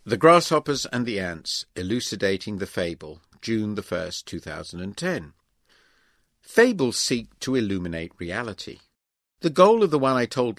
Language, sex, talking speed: English, male, 130 wpm